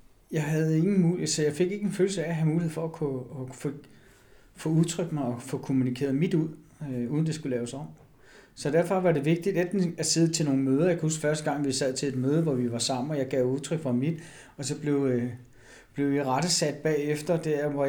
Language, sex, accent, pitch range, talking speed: Danish, male, native, 130-160 Hz, 245 wpm